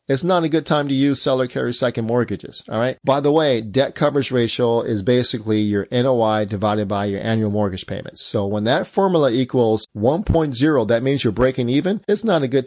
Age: 40-59